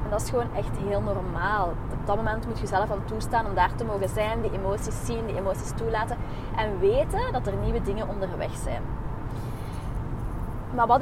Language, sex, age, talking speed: Dutch, female, 20-39, 190 wpm